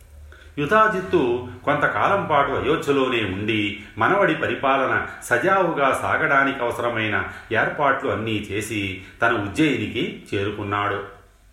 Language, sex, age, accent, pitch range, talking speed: Telugu, male, 40-59, native, 100-135 Hz, 80 wpm